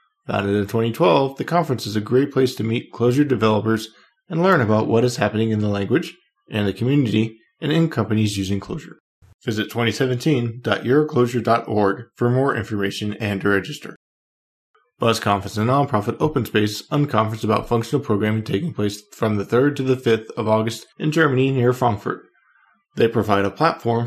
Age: 20-39